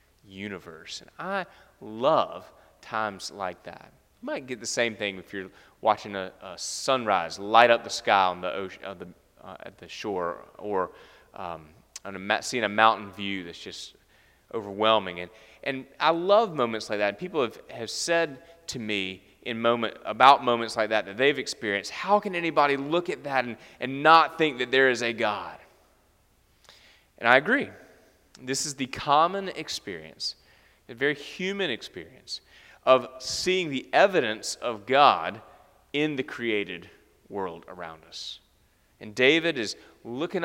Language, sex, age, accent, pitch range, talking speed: English, male, 30-49, American, 100-130 Hz, 160 wpm